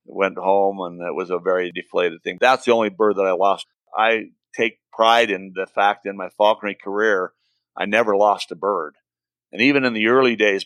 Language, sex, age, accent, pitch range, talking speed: English, male, 50-69, American, 100-115 Hz, 210 wpm